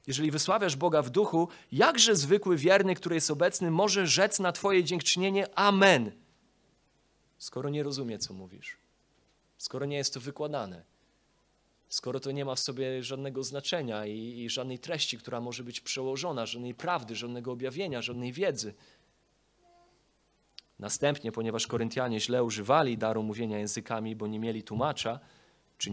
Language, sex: Polish, male